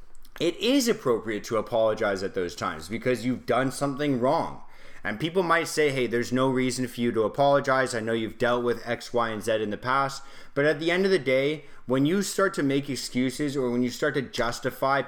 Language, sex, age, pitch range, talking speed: English, male, 20-39, 120-145 Hz, 225 wpm